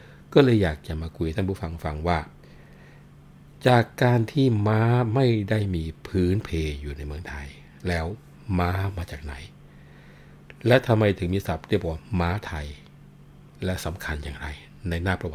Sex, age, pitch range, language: male, 60-79, 75-95 Hz, Thai